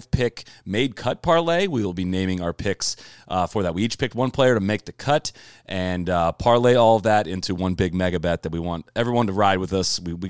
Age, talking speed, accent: 30-49, 250 wpm, American